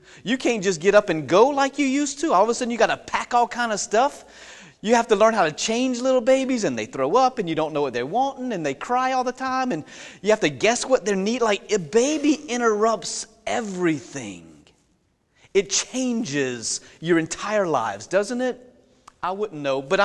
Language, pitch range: English, 145-230 Hz